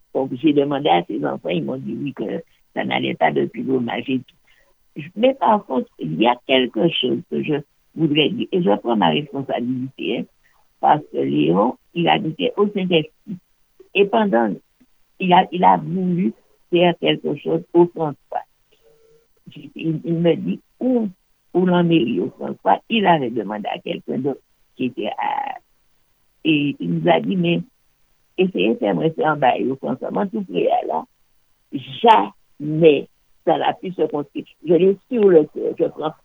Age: 60-79